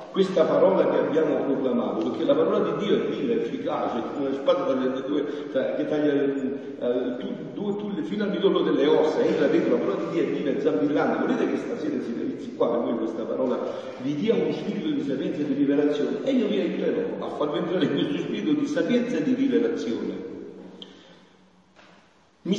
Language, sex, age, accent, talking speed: Italian, male, 50-69, native, 180 wpm